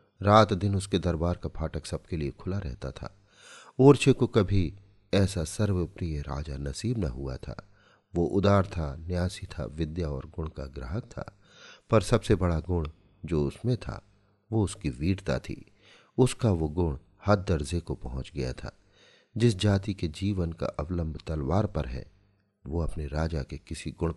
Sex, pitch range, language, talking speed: male, 75-100 Hz, Hindi, 165 wpm